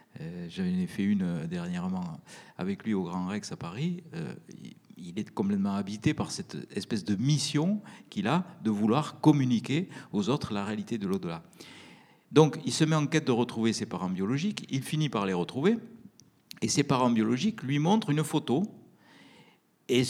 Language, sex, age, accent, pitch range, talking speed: French, male, 50-69, French, 110-175 Hz, 170 wpm